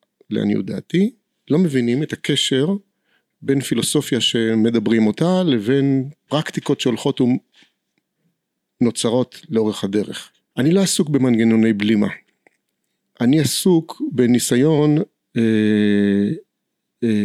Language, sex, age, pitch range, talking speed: Hebrew, male, 50-69, 115-145 Hz, 90 wpm